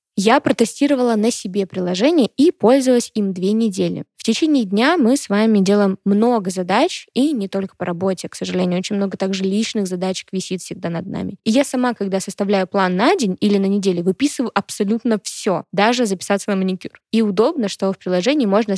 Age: 20-39